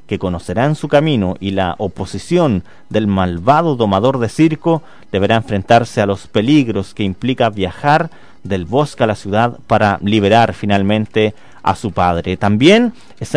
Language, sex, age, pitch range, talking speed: Spanish, male, 40-59, 120-180 Hz, 150 wpm